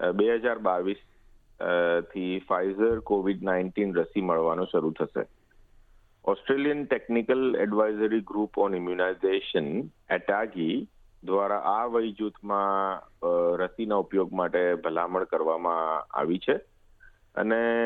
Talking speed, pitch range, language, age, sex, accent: 100 wpm, 95-110 Hz, Gujarati, 50-69, male, native